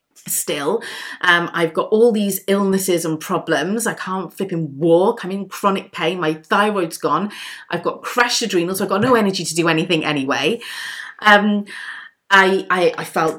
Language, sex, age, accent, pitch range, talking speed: English, female, 30-49, British, 165-205 Hz, 170 wpm